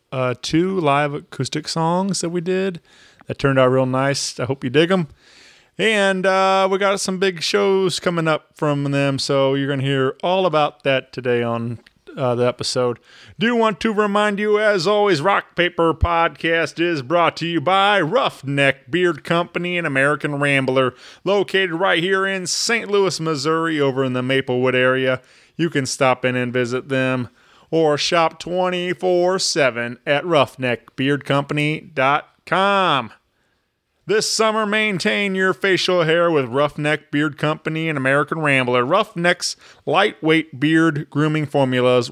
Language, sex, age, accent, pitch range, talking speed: English, male, 30-49, American, 135-185 Hz, 150 wpm